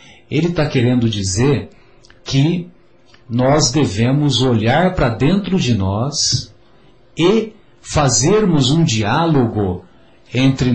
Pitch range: 120-165 Hz